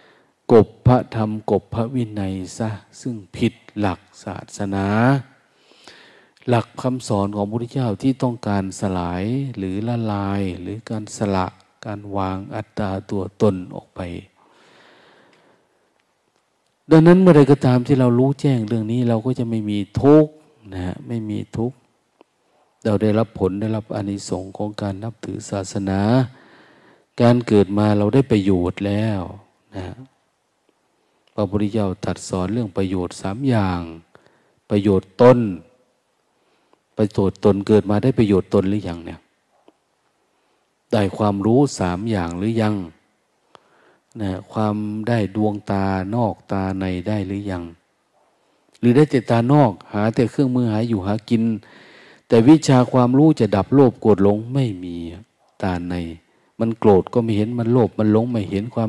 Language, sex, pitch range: Thai, male, 100-120 Hz